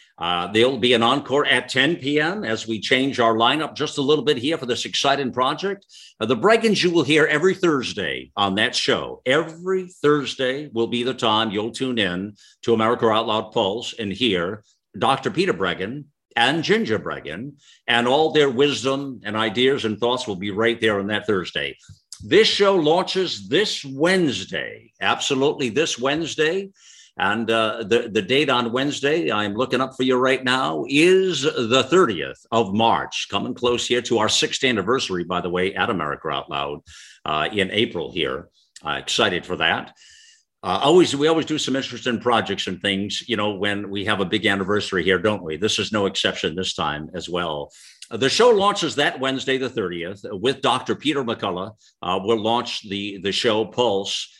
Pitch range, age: 105-145 Hz, 50-69